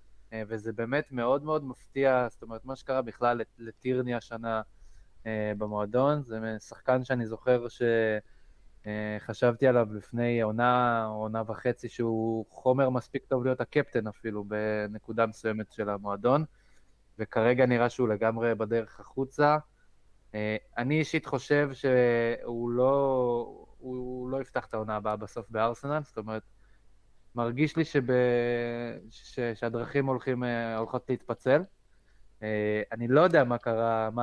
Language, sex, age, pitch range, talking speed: Hebrew, male, 20-39, 110-130 Hz, 125 wpm